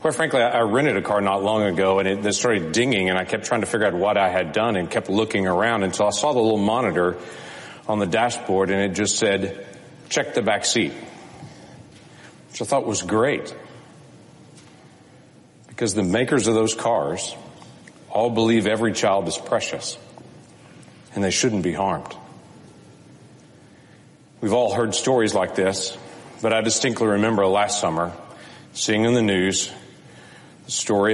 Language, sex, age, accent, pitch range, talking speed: English, male, 40-59, American, 95-110 Hz, 160 wpm